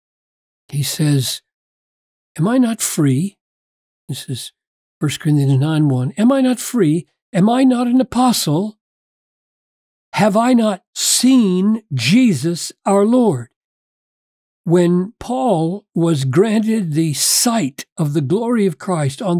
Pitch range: 150-220 Hz